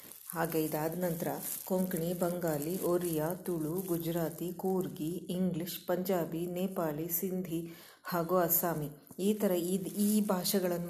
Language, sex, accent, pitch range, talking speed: Kannada, female, native, 165-195 Hz, 110 wpm